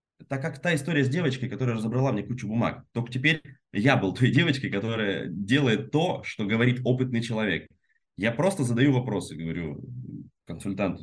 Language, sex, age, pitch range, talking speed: Russian, male, 20-39, 100-135 Hz, 165 wpm